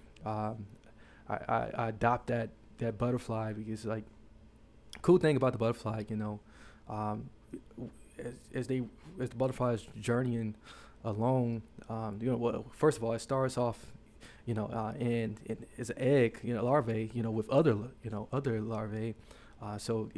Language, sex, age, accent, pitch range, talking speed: English, male, 20-39, American, 110-125 Hz, 165 wpm